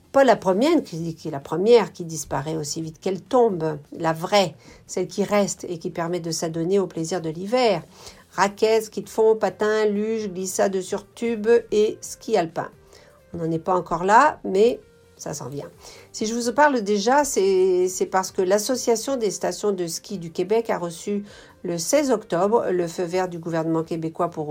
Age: 50-69